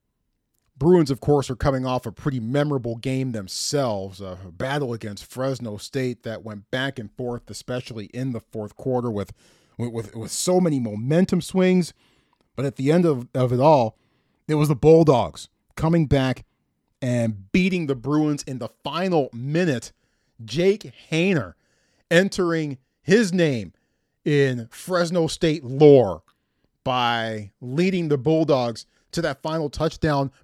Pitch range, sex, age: 125-180 Hz, male, 40-59